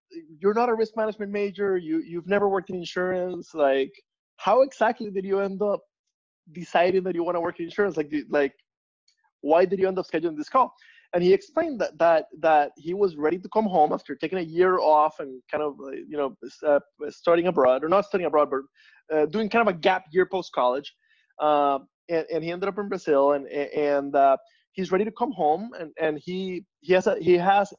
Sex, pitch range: male, 155-205 Hz